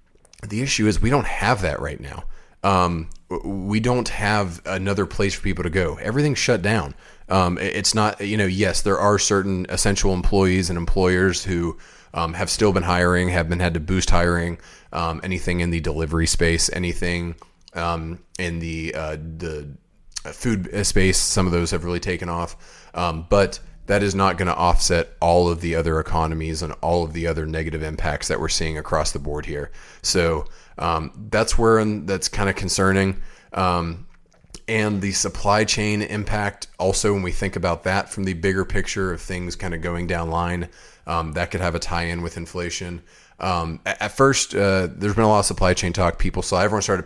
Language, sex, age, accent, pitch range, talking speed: English, male, 30-49, American, 85-100 Hz, 195 wpm